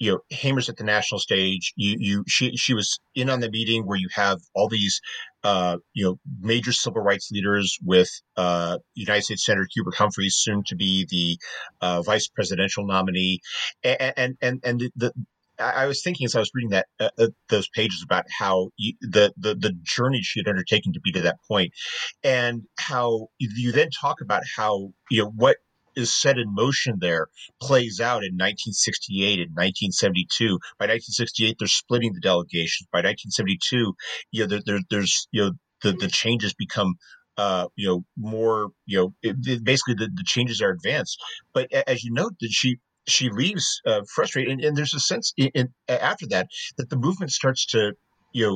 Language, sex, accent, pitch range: English, male, American, 95-125 Hz